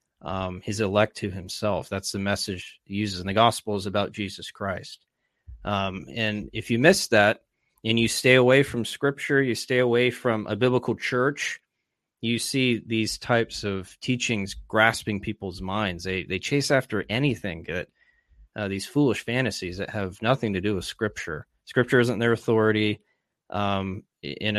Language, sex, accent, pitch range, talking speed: English, male, American, 100-115 Hz, 165 wpm